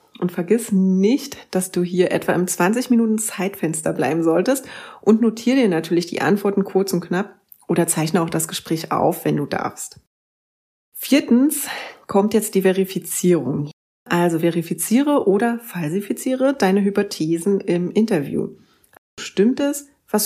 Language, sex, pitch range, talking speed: German, female, 175-220 Hz, 135 wpm